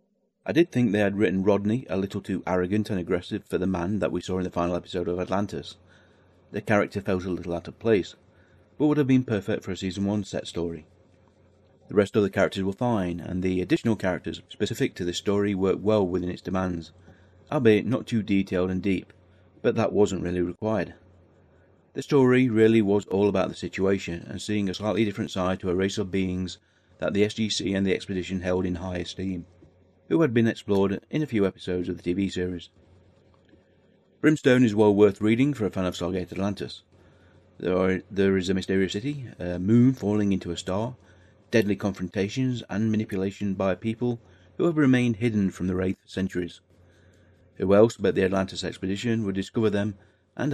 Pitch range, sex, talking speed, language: 90-105 Hz, male, 195 wpm, English